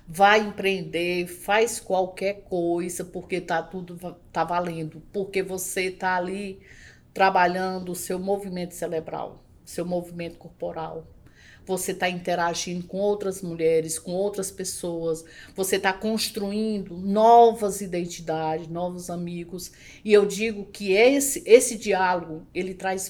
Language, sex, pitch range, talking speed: Portuguese, female, 175-220 Hz, 120 wpm